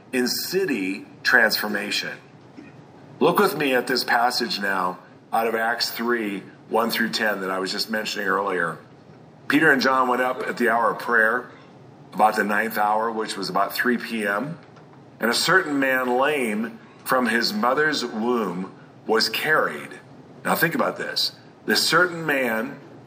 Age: 40-59